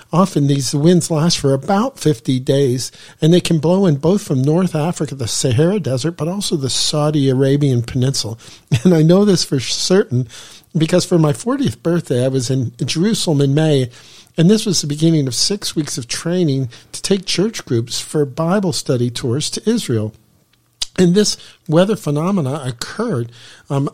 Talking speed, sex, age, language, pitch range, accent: 175 wpm, male, 50-69, English, 135-175 Hz, American